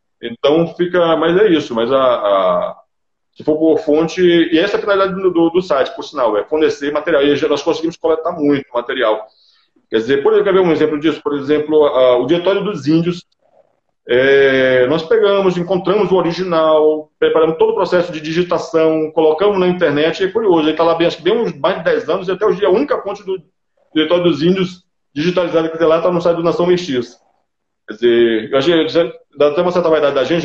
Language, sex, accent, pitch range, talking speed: Portuguese, male, Brazilian, 150-185 Hz, 205 wpm